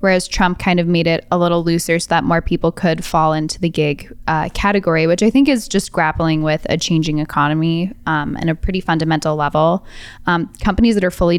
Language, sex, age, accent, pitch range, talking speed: English, female, 10-29, American, 160-185 Hz, 215 wpm